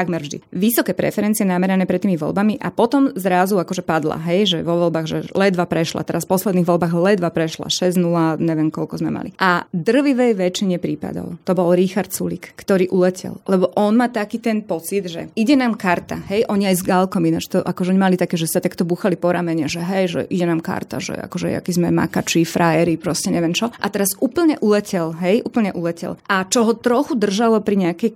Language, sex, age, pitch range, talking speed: Slovak, female, 20-39, 175-210 Hz, 205 wpm